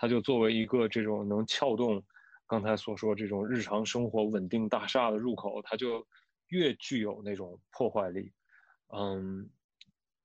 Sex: male